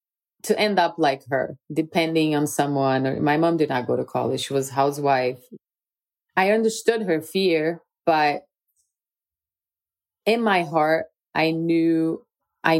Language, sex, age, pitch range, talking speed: English, female, 30-49, 140-170 Hz, 135 wpm